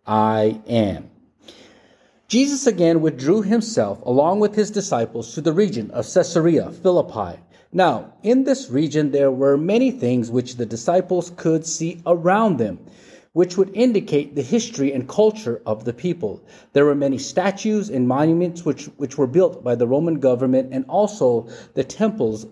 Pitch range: 130-195 Hz